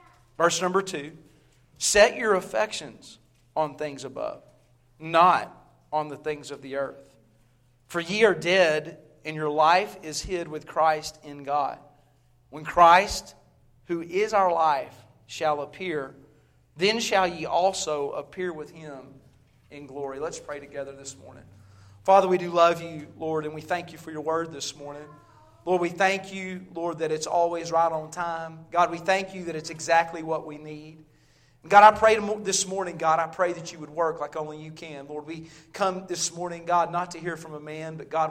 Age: 40-59